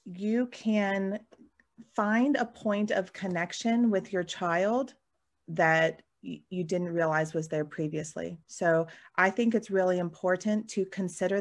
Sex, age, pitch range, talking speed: female, 30-49, 175-210 Hz, 130 wpm